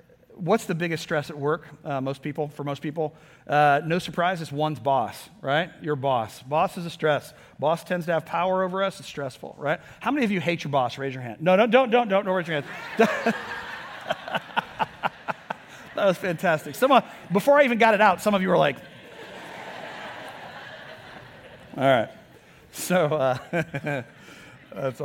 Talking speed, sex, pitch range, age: 175 wpm, male, 150-195 Hz, 40-59